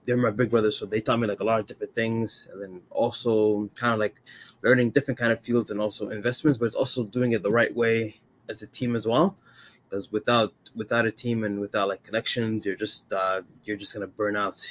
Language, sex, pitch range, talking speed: English, male, 105-120 Hz, 235 wpm